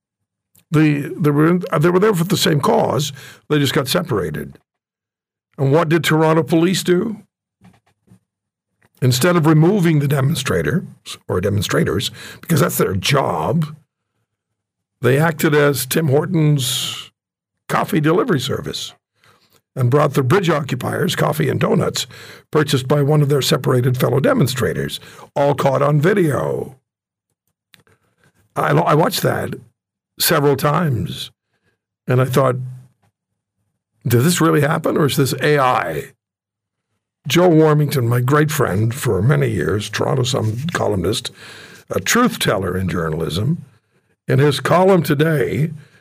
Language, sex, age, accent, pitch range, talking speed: English, male, 60-79, American, 125-165 Hz, 125 wpm